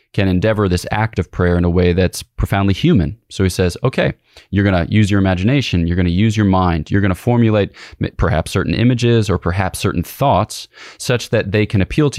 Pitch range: 95-115 Hz